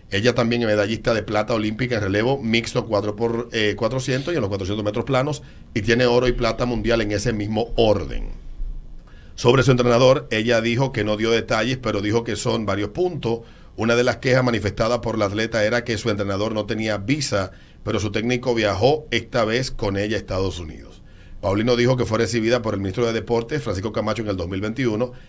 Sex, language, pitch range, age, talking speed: male, Spanish, 105-120 Hz, 50-69, 200 wpm